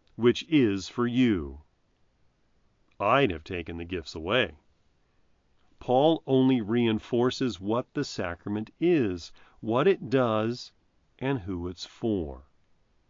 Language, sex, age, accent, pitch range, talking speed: English, male, 40-59, American, 95-140 Hz, 110 wpm